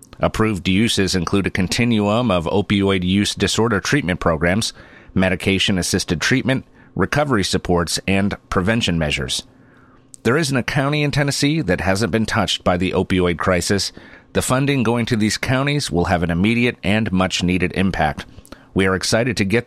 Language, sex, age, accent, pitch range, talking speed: English, male, 40-59, American, 90-110 Hz, 155 wpm